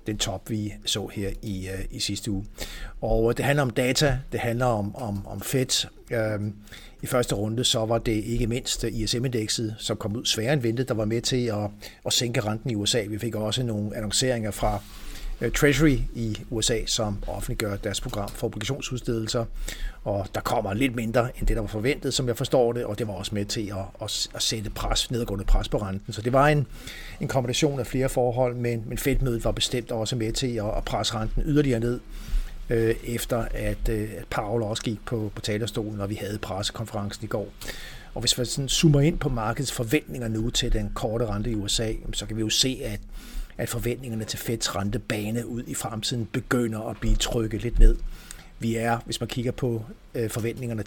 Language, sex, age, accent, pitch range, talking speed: Danish, male, 60-79, native, 105-120 Hz, 200 wpm